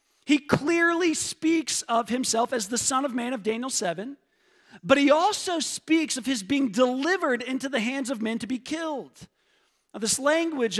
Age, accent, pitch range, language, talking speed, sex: 40-59, American, 230-290 Hz, English, 180 wpm, male